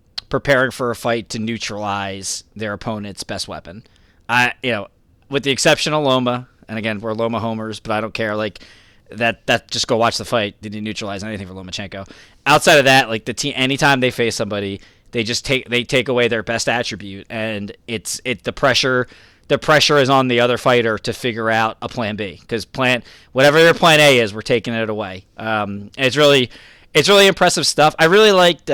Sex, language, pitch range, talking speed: male, English, 110-145 Hz, 205 wpm